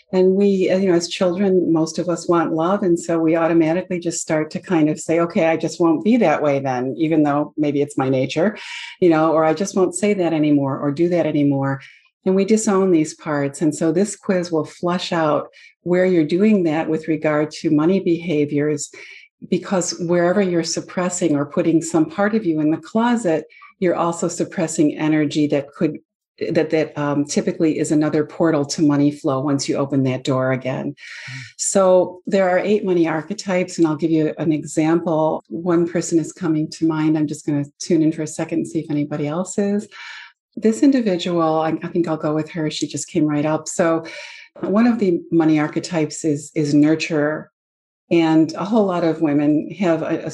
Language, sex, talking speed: English, female, 200 wpm